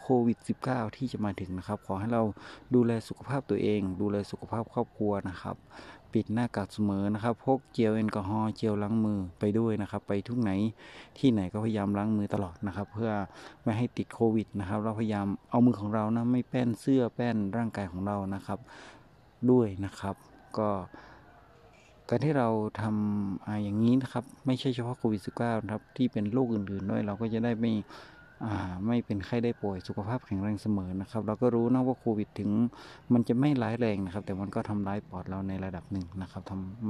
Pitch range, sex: 100-120 Hz, male